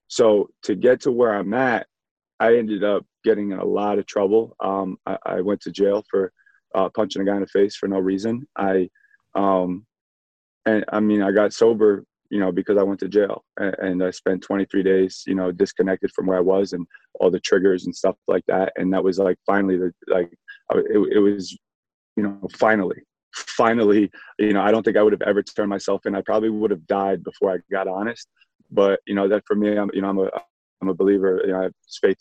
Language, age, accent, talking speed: French, 20-39, American, 230 wpm